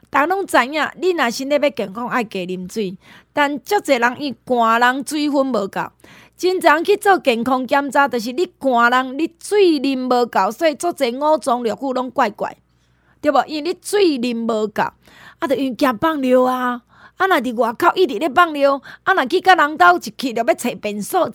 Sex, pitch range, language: female, 225-320 Hz, Chinese